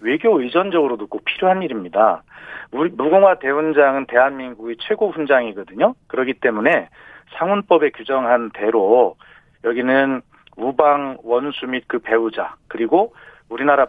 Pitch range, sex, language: 125-185 Hz, male, Korean